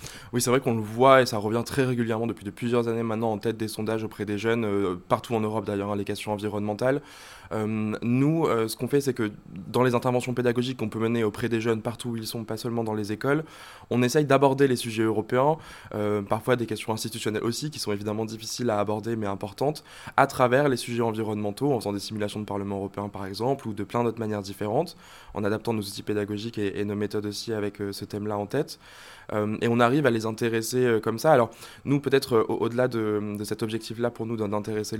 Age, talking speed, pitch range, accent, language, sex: 20-39, 235 wpm, 105-125 Hz, French, French, male